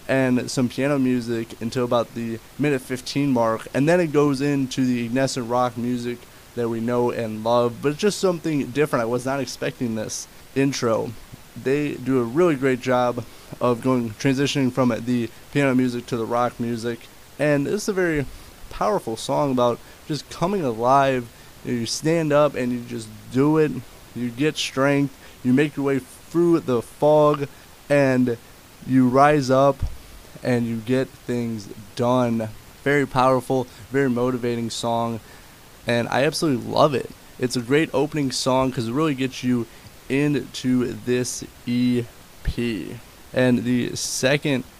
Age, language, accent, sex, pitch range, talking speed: 20-39, English, American, male, 120-140 Hz, 155 wpm